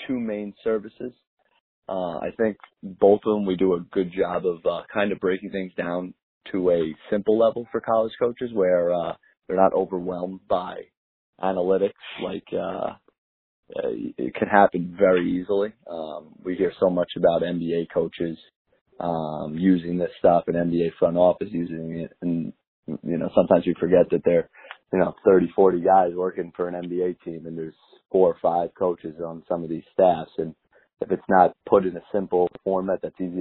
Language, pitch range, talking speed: English, 85-100 Hz, 180 wpm